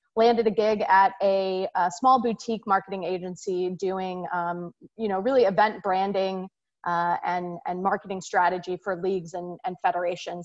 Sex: female